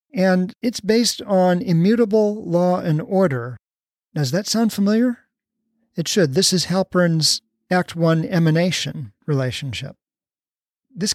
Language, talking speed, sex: English, 120 wpm, male